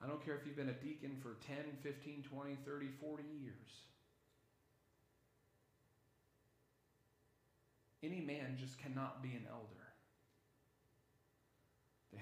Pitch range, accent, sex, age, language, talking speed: 110-140 Hz, American, male, 40-59, English, 115 wpm